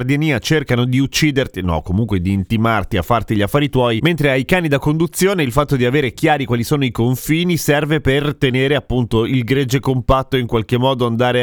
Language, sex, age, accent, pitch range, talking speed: Italian, male, 30-49, native, 120-155 Hz, 195 wpm